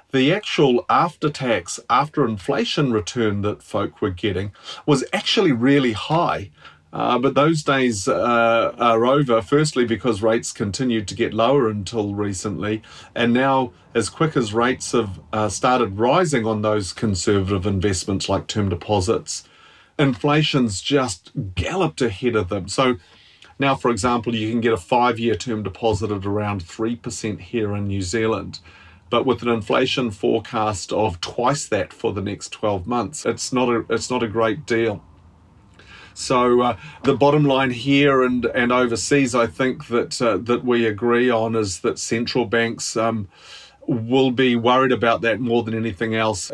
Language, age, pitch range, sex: English, 40-59, 105-125 Hz, male